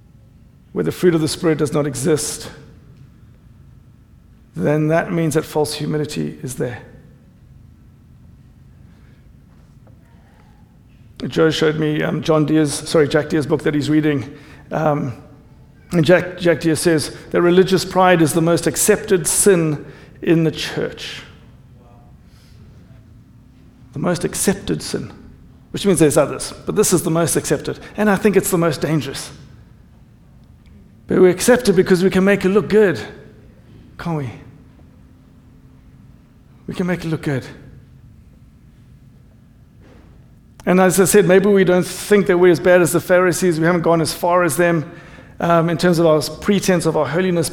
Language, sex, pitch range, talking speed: English, male, 150-180 Hz, 150 wpm